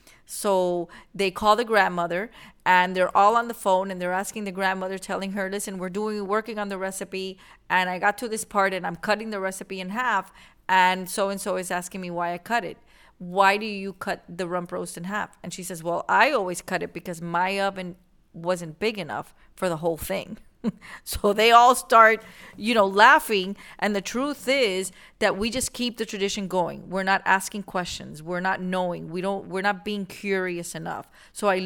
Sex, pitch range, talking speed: female, 180-210 Hz, 210 wpm